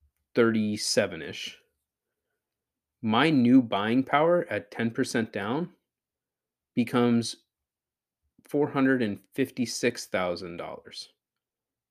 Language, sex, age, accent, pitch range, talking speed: English, male, 30-49, American, 105-140 Hz, 50 wpm